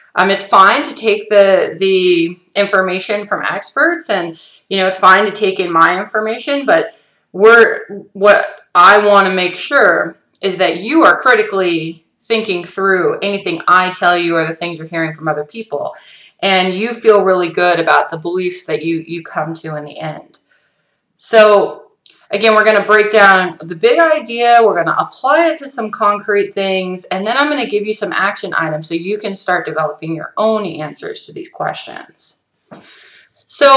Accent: American